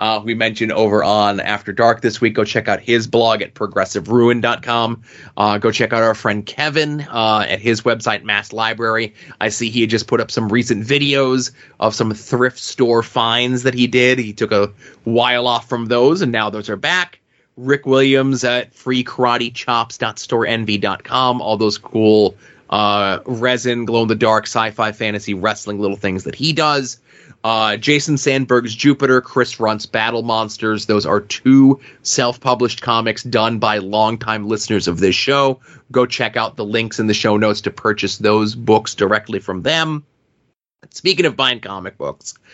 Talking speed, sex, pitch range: 165 wpm, male, 110-130 Hz